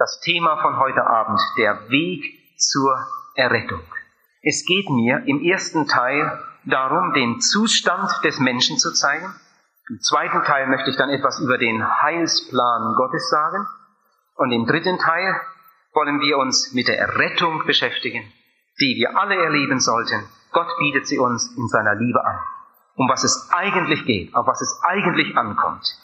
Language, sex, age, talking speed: German, male, 40-59, 155 wpm